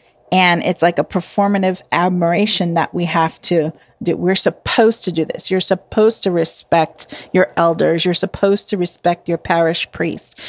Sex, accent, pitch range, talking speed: female, American, 170-220 Hz, 165 wpm